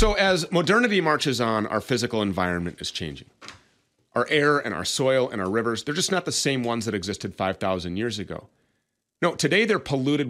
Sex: male